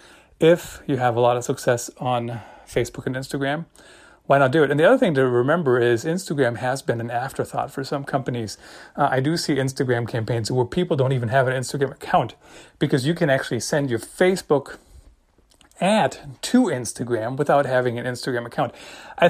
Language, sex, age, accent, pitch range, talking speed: English, male, 30-49, American, 120-145 Hz, 185 wpm